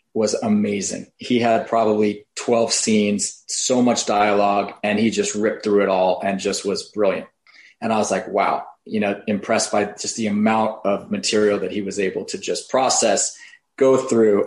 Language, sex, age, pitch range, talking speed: English, male, 30-49, 105-135 Hz, 185 wpm